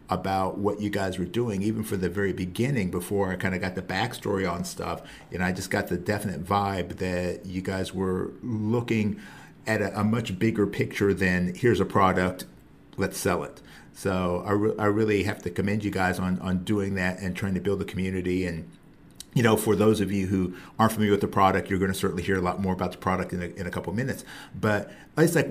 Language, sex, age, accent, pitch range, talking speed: English, male, 50-69, American, 95-120 Hz, 235 wpm